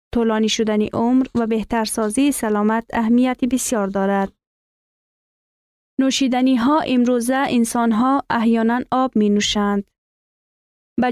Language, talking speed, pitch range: Persian, 105 wpm, 215-255 Hz